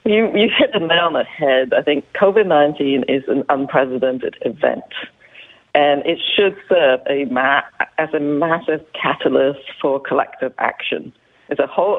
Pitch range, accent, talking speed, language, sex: 135-165 Hz, British, 160 wpm, English, female